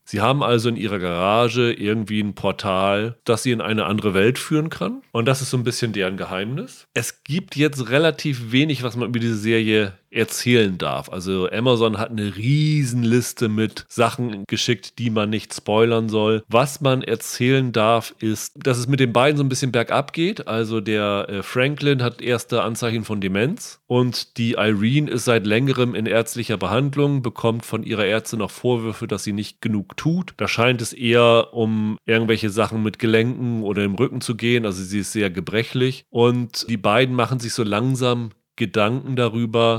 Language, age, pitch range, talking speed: German, 30-49, 110-130 Hz, 180 wpm